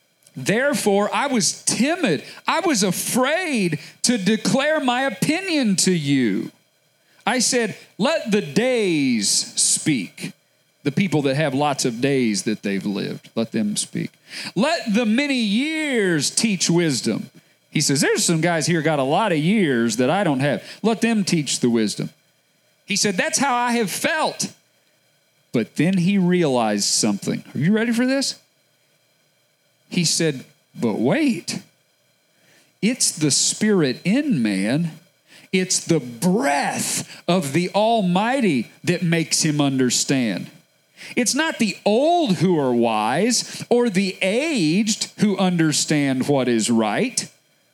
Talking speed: 135 wpm